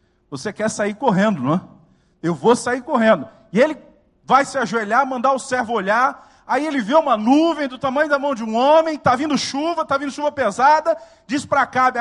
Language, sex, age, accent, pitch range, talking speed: Portuguese, male, 40-59, Brazilian, 170-275 Hz, 205 wpm